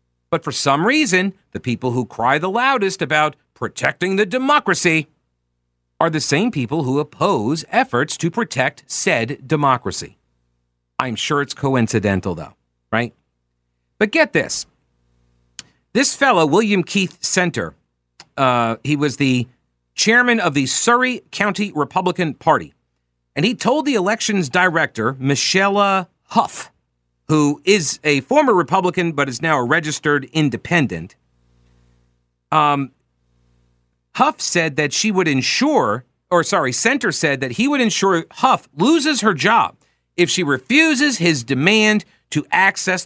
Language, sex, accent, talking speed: English, male, American, 130 wpm